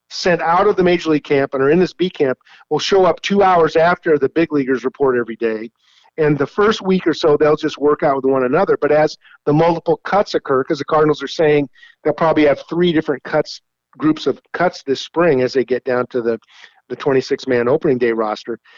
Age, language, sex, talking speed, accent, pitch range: 50-69, English, male, 230 wpm, American, 130-170 Hz